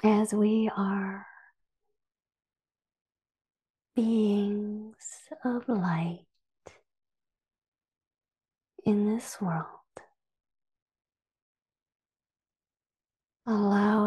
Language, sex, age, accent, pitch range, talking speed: English, female, 40-59, American, 185-210 Hz, 45 wpm